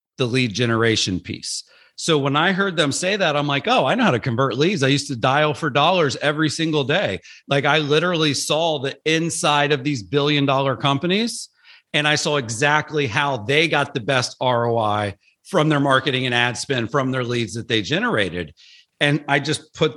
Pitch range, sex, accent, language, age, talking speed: 125-150 Hz, male, American, English, 40-59, 200 wpm